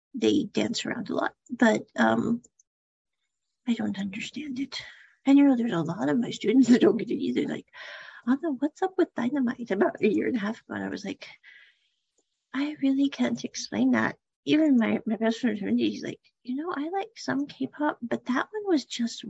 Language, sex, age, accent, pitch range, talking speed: English, female, 40-59, American, 225-290 Hz, 210 wpm